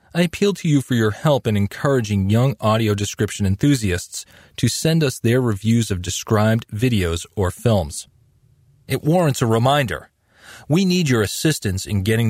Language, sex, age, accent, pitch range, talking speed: English, male, 30-49, American, 100-135 Hz, 160 wpm